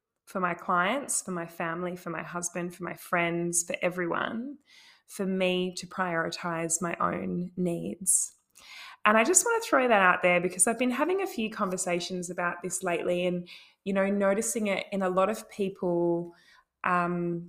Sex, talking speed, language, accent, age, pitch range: female, 175 wpm, English, Australian, 20-39, 180-220 Hz